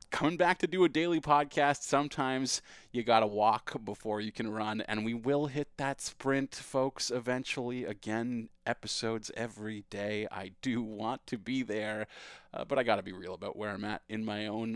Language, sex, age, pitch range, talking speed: English, male, 30-49, 110-165 Hz, 195 wpm